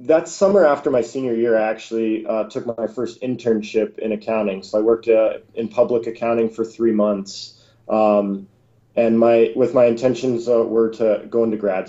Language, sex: English, male